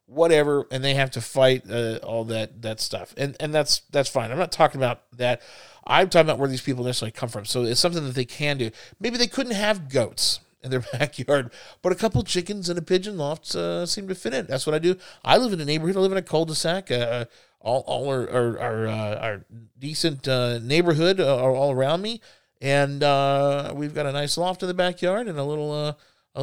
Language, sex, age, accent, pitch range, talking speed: English, male, 40-59, American, 120-165 Hz, 230 wpm